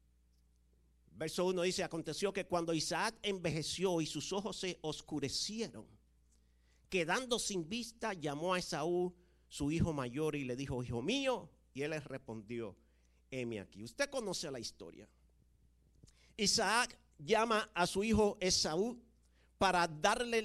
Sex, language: male, English